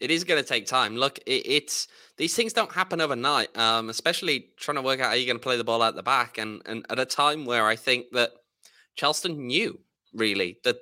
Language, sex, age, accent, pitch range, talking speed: English, male, 20-39, British, 110-145 Hz, 240 wpm